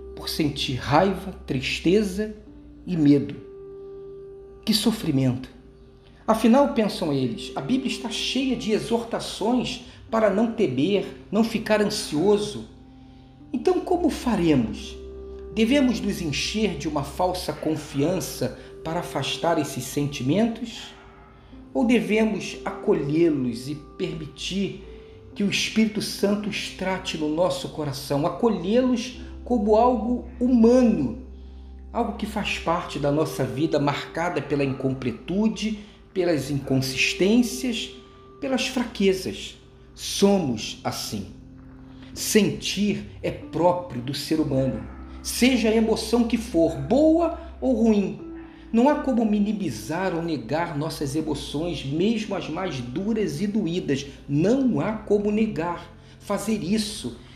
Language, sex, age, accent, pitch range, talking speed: Portuguese, male, 40-59, Brazilian, 140-220 Hz, 110 wpm